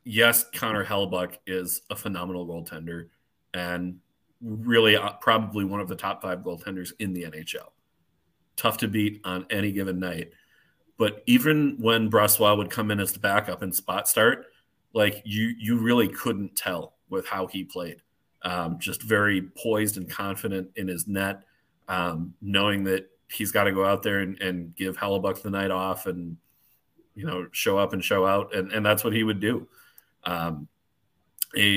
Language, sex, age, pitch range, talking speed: English, male, 30-49, 95-105 Hz, 170 wpm